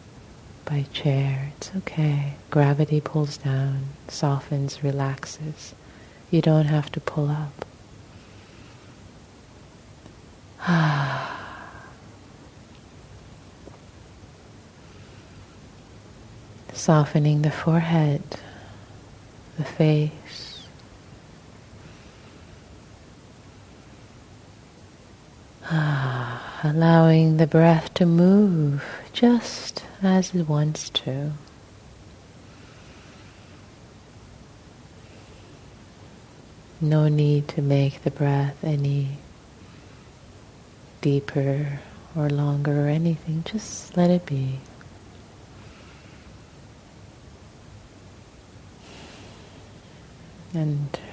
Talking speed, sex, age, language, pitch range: 60 wpm, female, 30-49, English, 110-155 Hz